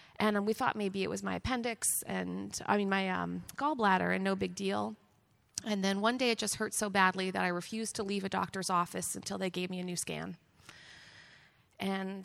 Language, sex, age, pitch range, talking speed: English, female, 30-49, 180-220 Hz, 210 wpm